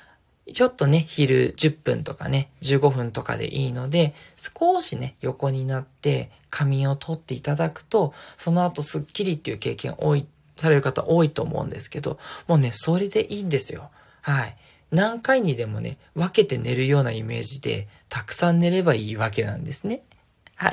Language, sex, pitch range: Japanese, male, 135-205 Hz